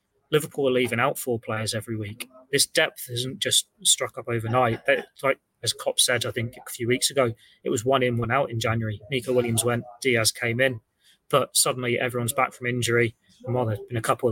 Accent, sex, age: British, male, 20-39